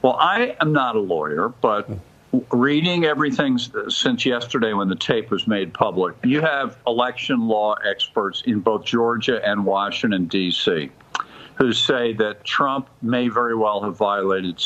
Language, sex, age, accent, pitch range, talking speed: English, male, 50-69, American, 105-145 Hz, 150 wpm